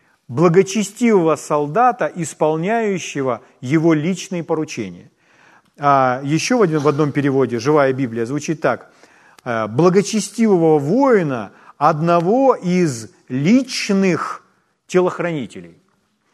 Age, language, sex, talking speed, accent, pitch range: 40-59, Ukrainian, male, 75 wpm, native, 145-195 Hz